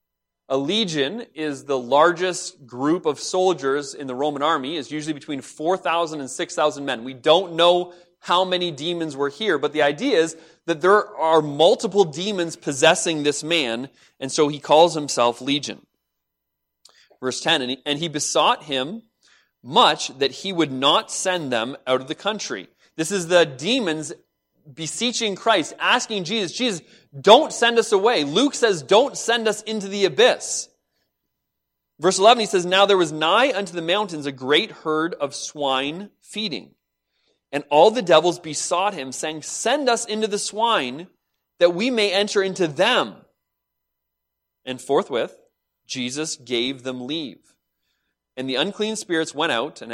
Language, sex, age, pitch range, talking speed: English, male, 30-49, 135-200 Hz, 155 wpm